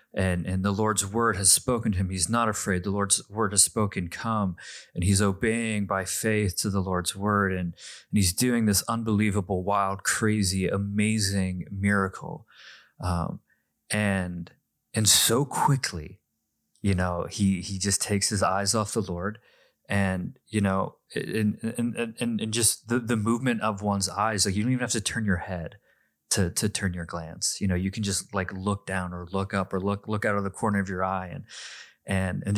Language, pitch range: English, 95-110 Hz